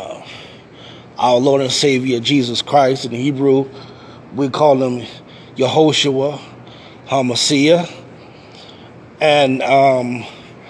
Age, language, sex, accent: 20-39, English, male, American